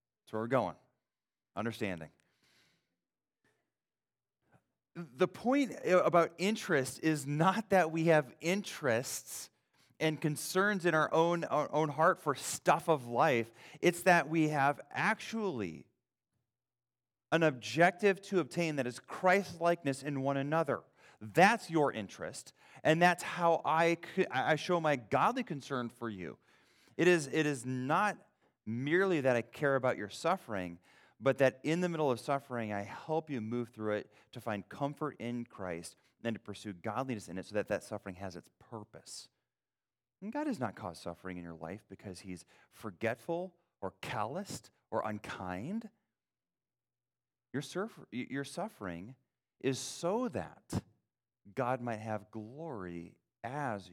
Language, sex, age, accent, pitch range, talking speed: English, male, 30-49, American, 110-170 Hz, 140 wpm